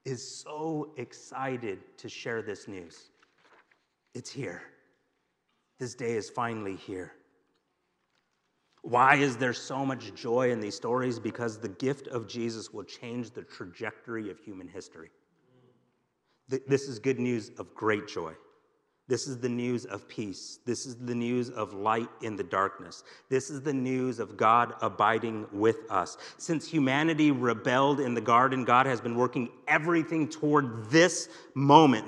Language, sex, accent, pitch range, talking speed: English, male, American, 120-150 Hz, 150 wpm